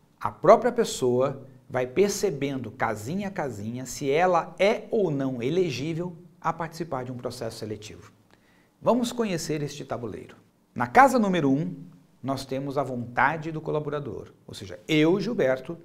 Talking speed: 150 wpm